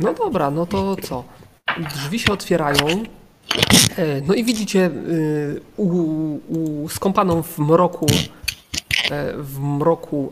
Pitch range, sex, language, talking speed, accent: 155-190 Hz, male, Polish, 105 wpm, native